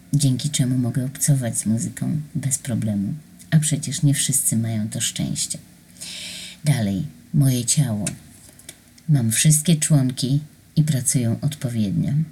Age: 30-49